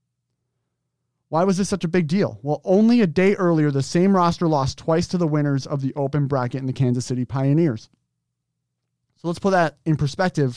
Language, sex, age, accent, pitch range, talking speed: English, male, 30-49, American, 135-175 Hz, 200 wpm